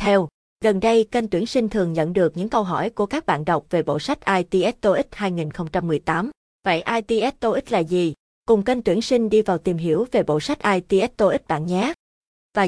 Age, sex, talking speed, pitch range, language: 20-39, female, 205 wpm, 175-225 Hz, Vietnamese